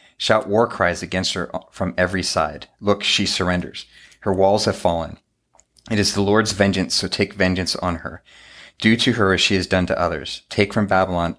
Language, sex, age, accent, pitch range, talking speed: English, male, 30-49, American, 90-100 Hz, 195 wpm